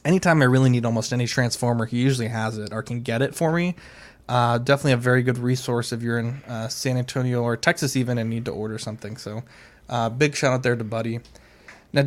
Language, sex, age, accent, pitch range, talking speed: English, male, 20-39, American, 120-140 Hz, 230 wpm